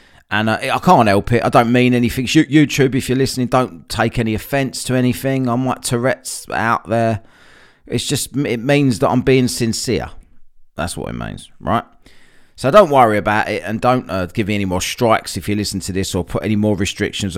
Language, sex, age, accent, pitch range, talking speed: English, male, 30-49, British, 95-125 Hz, 210 wpm